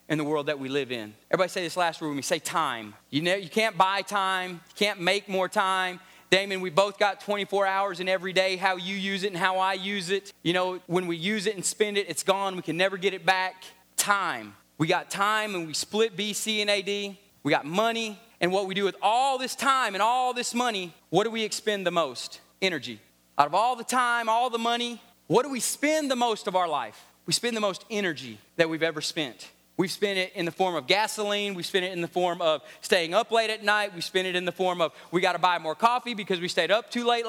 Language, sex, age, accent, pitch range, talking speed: English, male, 30-49, American, 180-235 Hz, 255 wpm